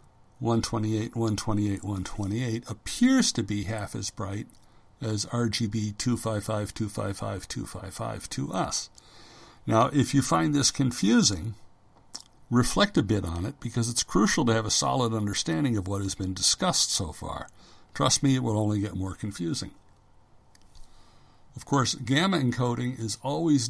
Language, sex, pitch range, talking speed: English, male, 105-130 Hz, 140 wpm